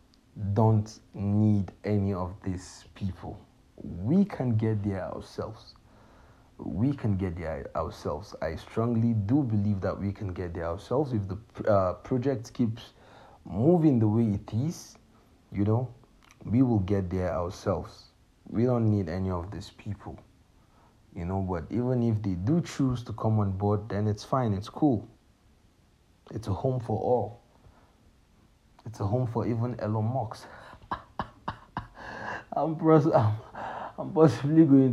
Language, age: English, 50-69